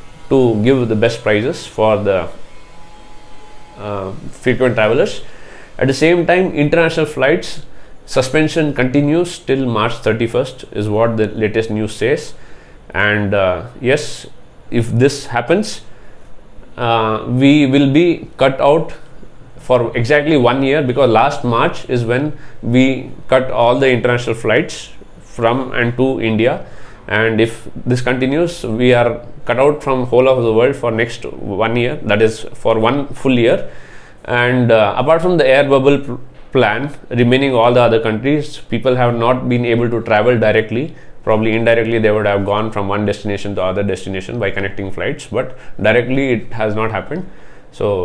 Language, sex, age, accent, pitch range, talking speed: English, male, 20-39, Indian, 110-135 Hz, 155 wpm